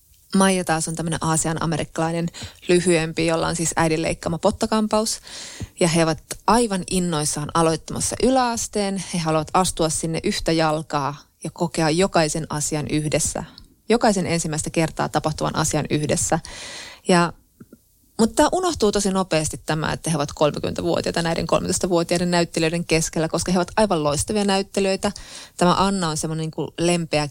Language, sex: Finnish, female